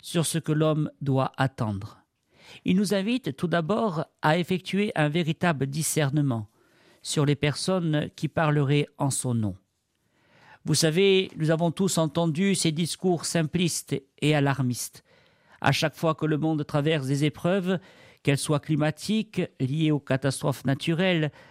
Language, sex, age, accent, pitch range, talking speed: French, male, 50-69, French, 140-175 Hz, 140 wpm